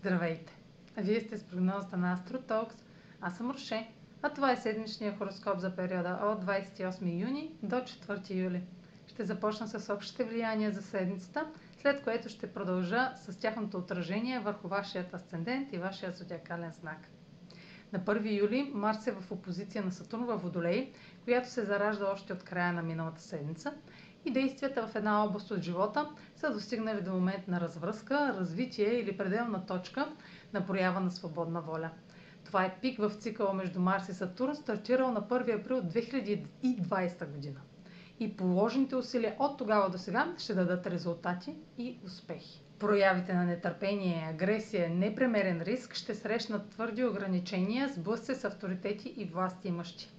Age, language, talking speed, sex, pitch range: 40-59, Bulgarian, 155 wpm, female, 185-230 Hz